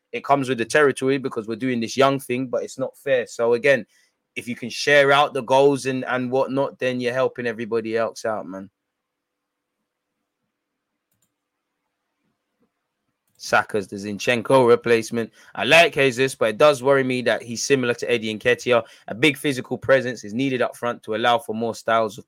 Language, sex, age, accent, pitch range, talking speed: English, male, 20-39, British, 115-140 Hz, 180 wpm